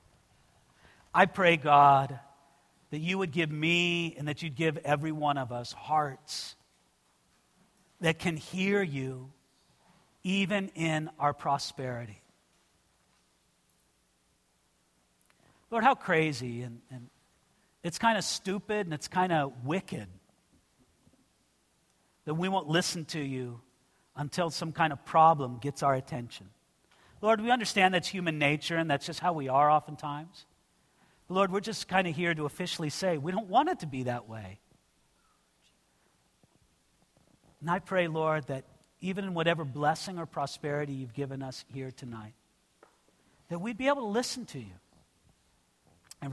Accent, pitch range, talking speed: American, 130-175 Hz, 140 wpm